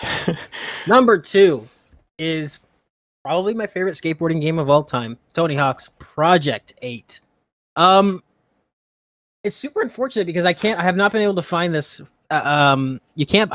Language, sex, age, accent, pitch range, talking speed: English, male, 20-39, American, 135-185 Hz, 150 wpm